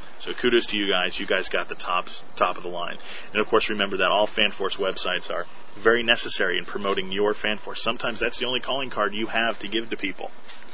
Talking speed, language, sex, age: 230 wpm, English, male, 30-49